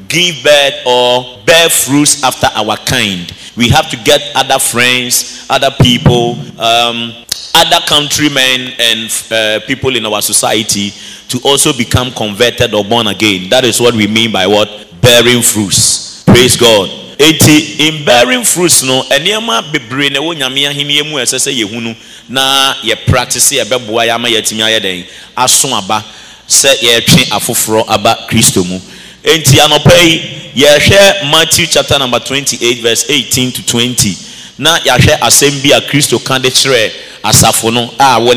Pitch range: 115-165 Hz